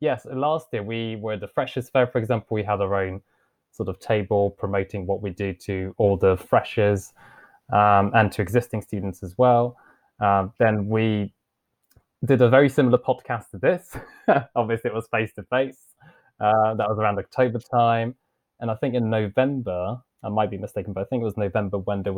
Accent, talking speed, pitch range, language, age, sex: British, 190 wpm, 100-115 Hz, English, 20-39, male